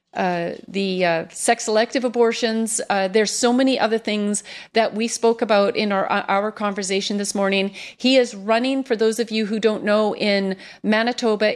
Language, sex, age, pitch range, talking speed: English, female, 40-59, 195-230 Hz, 175 wpm